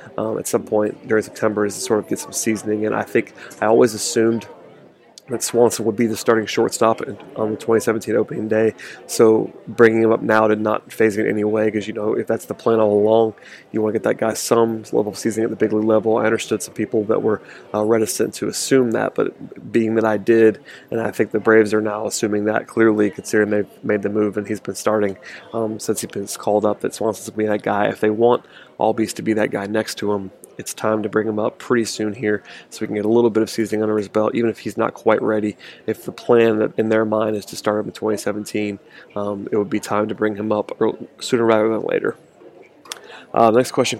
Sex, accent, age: male, American, 30-49